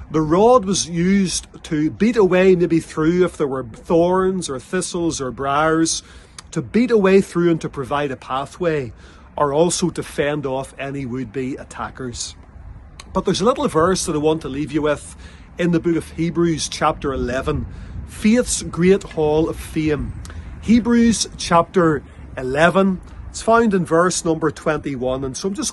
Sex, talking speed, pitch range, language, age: male, 165 wpm, 130-180 Hz, English, 30-49